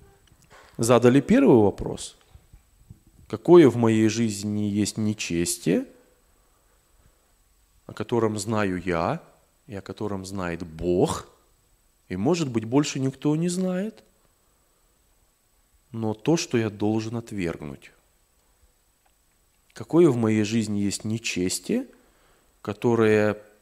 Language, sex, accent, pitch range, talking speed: Russian, male, native, 100-150 Hz, 95 wpm